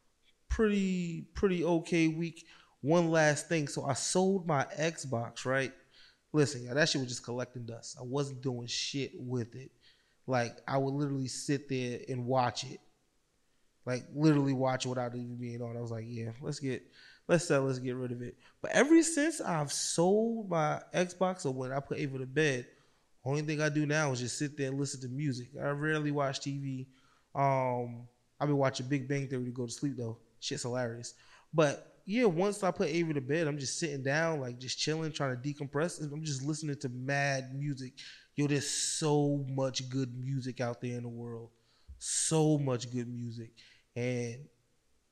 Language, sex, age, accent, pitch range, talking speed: English, male, 20-39, American, 125-155 Hz, 190 wpm